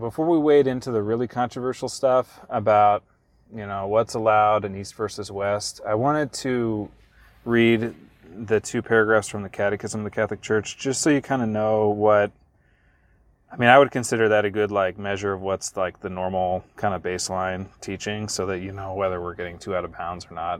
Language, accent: English, American